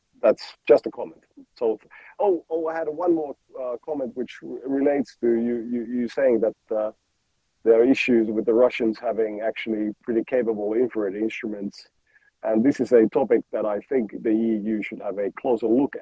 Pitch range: 105-135 Hz